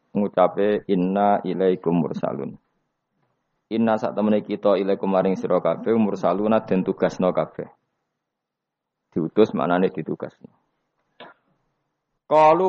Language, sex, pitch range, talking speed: Indonesian, male, 95-115 Hz, 110 wpm